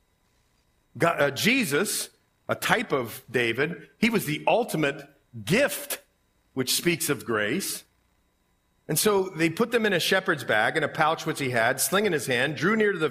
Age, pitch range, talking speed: 50-69, 115-180 Hz, 180 wpm